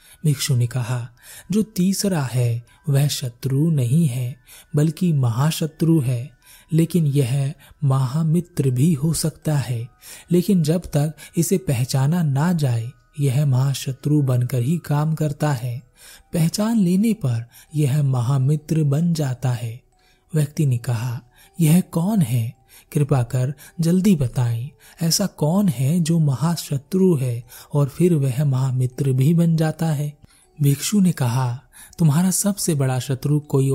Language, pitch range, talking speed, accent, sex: Hindi, 130-165 Hz, 130 wpm, native, male